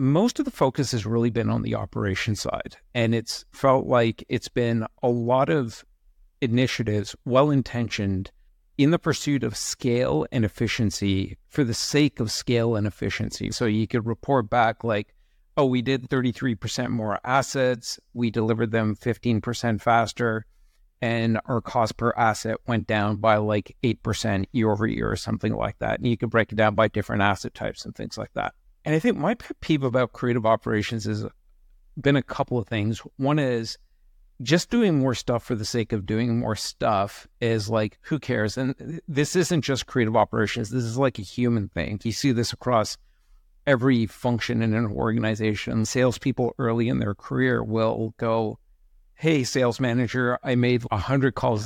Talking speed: 175 wpm